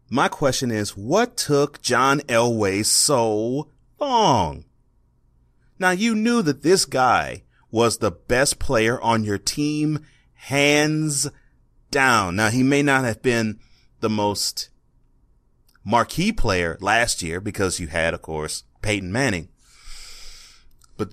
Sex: male